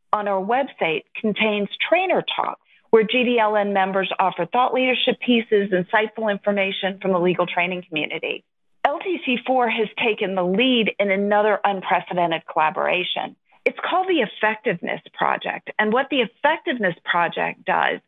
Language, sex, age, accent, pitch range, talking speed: English, female, 40-59, American, 190-240 Hz, 135 wpm